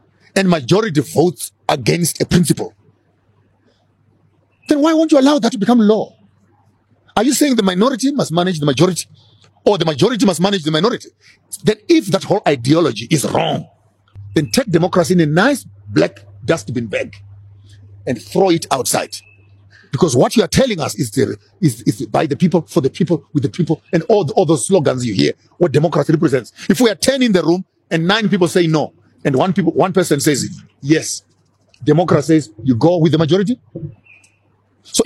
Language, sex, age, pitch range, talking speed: English, male, 50-69, 125-200 Hz, 185 wpm